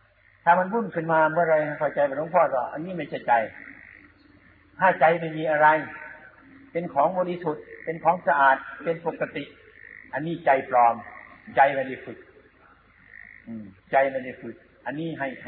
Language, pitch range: Thai, 135-175 Hz